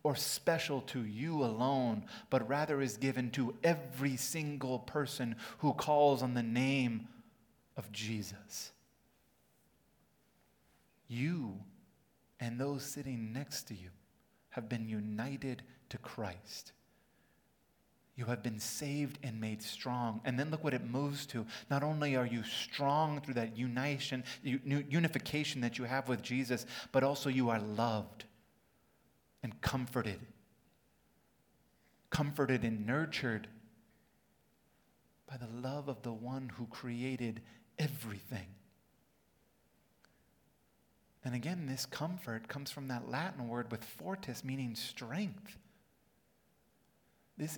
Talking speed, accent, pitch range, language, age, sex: 115 wpm, American, 115-145 Hz, English, 30-49, male